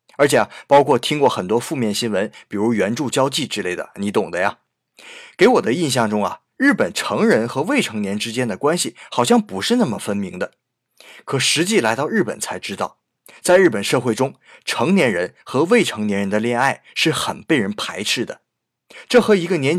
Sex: male